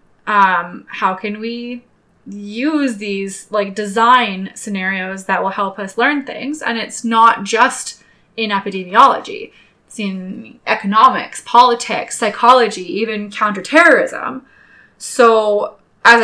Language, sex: English, female